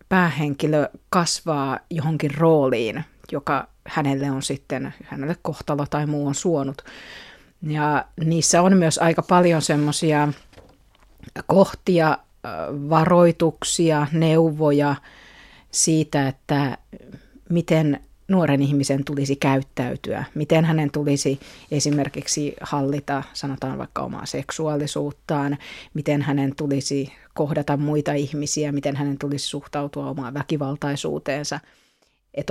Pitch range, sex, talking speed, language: 140-165 Hz, female, 100 wpm, Finnish